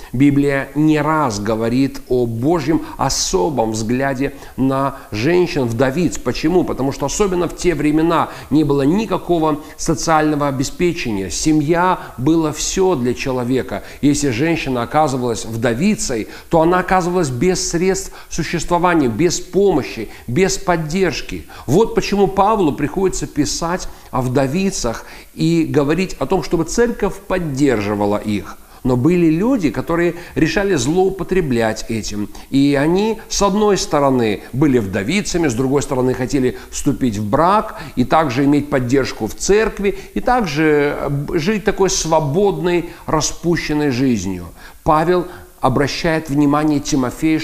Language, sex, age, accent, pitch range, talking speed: Russian, male, 40-59, native, 130-180 Hz, 120 wpm